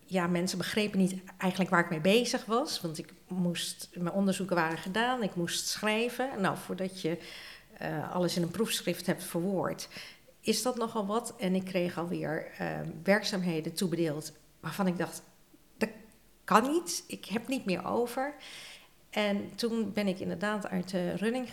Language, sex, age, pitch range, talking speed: Dutch, female, 50-69, 175-220 Hz, 165 wpm